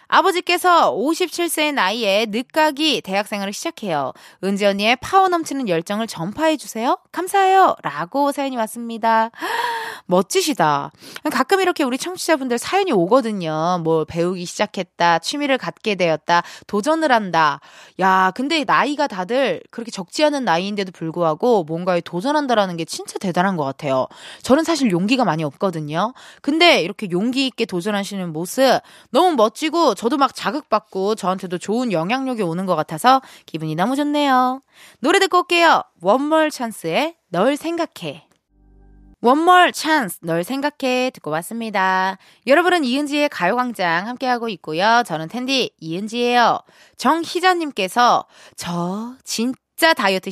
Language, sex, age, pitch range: Korean, female, 20-39, 190-300 Hz